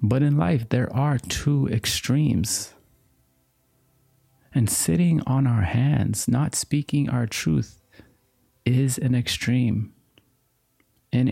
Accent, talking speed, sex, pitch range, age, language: American, 105 wpm, male, 100-135 Hz, 30-49, English